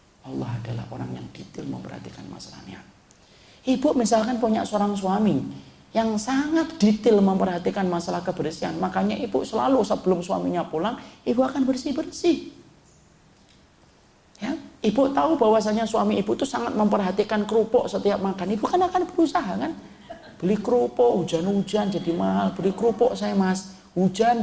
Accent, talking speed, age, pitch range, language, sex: native, 135 wpm, 40-59, 190-245 Hz, Indonesian, male